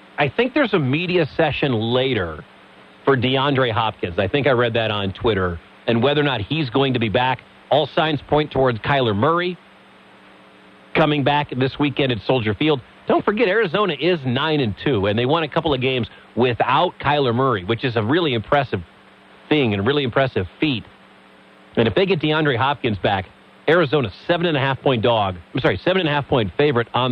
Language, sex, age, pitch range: English, male, 40-59, 110-150 Hz